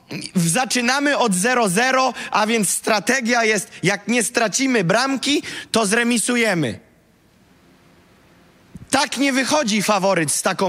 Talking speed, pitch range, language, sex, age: 105 wpm, 185-240 Hz, Polish, male, 30-49